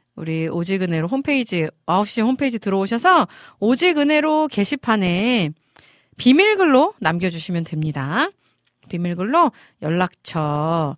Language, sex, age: Korean, female, 40-59